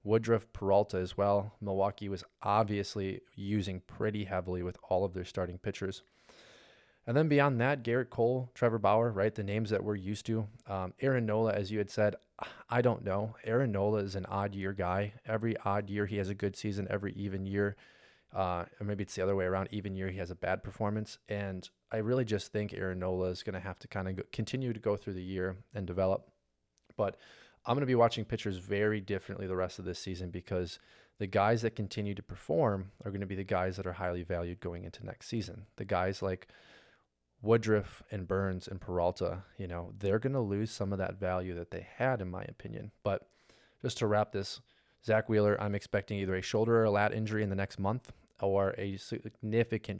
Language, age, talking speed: English, 30-49, 215 wpm